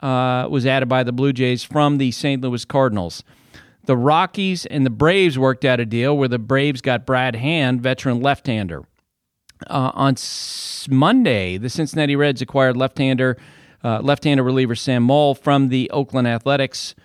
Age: 40-59